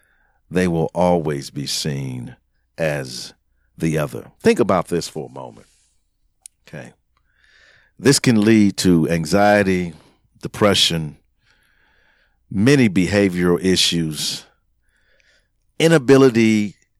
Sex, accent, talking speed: male, American, 90 wpm